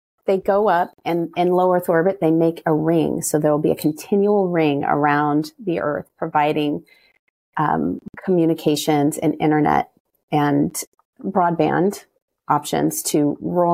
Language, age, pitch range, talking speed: English, 30-49, 155-180 Hz, 135 wpm